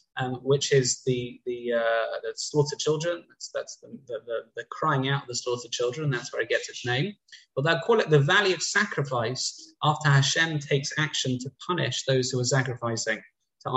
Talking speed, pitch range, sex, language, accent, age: 195 wpm, 125-165 Hz, male, English, British, 20-39